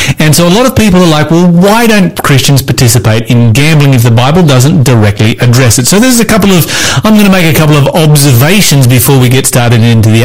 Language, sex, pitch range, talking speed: English, male, 120-160 Hz, 240 wpm